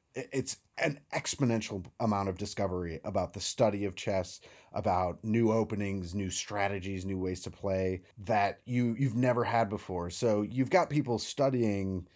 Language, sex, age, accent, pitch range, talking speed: English, male, 30-49, American, 95-115 Hz, 150 wpm